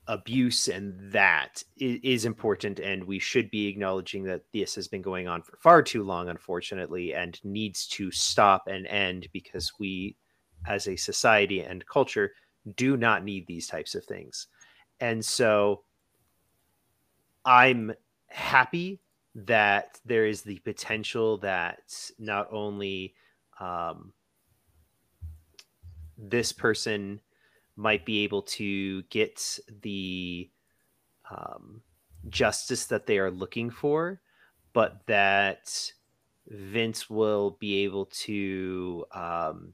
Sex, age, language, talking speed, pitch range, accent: male, 30-49, English, 115 wpm, 95-110 Hz, American